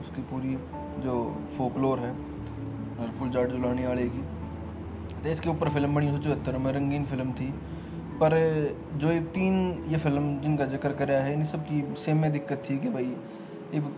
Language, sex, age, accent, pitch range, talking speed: Hindi, male, 20-39, native, 130-155 Hz, 170 wpm